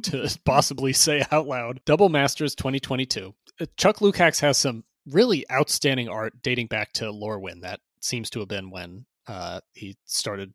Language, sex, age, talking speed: English, male, 30-49, 160 wpm